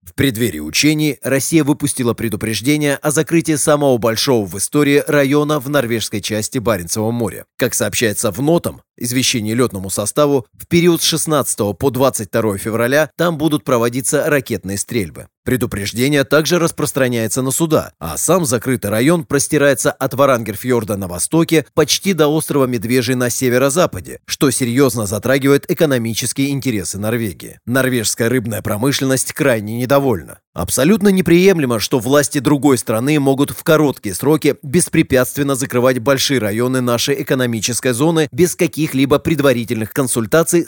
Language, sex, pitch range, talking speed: Russian, male, 115-150 Hz, 135 wpm